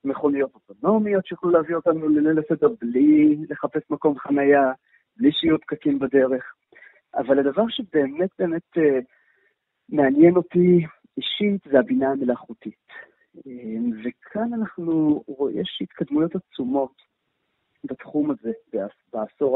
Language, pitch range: Hebrew, 125-165 Hz